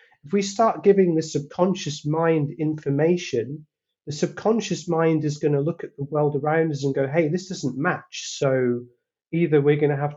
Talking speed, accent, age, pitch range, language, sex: 190 wpm, British, 30-49, 135-160 Hz, English, male